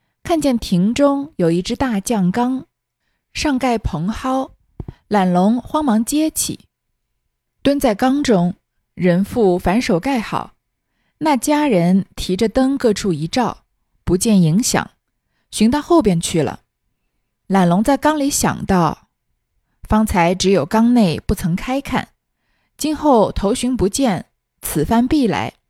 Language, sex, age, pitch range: Chinese, female, 20-39, 180-265 Hz